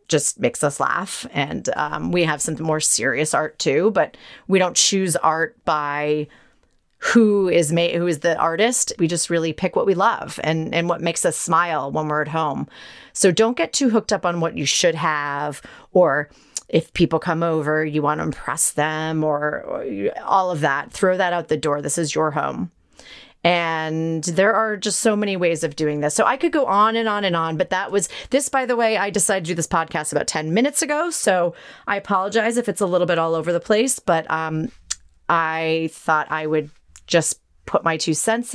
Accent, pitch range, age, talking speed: American, 160-205 Hz, 30-49, 210 wpm